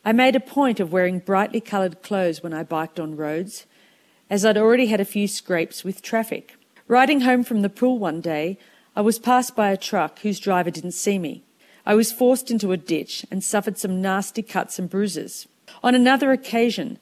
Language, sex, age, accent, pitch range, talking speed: English, female, 50-69, Australian, 180-230 Hz, 200 wpm